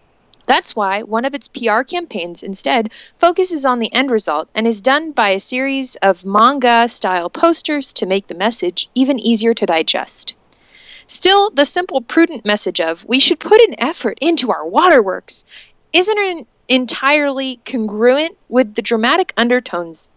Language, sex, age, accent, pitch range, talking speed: English, female, 30-49, American, 200-280 Hz, 150 wpm